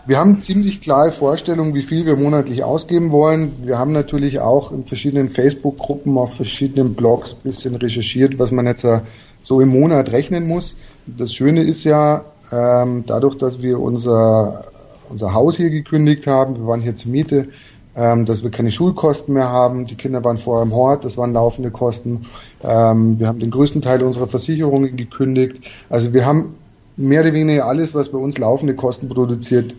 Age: 30-49